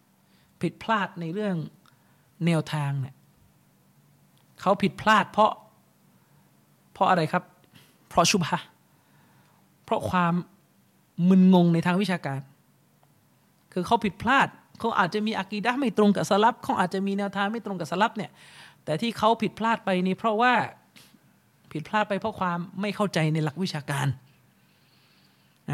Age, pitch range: 20-39, 175-220 Hz